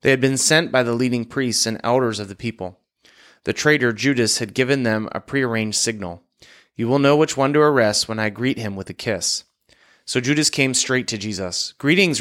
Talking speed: 210 wpm